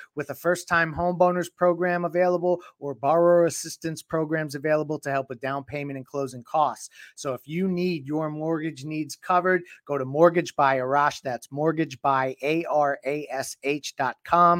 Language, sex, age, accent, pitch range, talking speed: English, male, 30-49, American, 130-155 Hz, 140 wpm